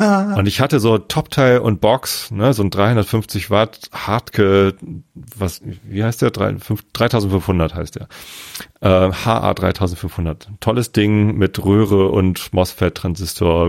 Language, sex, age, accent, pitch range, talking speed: German, male, 40-59, German, 95-115 Hz, 120 wpm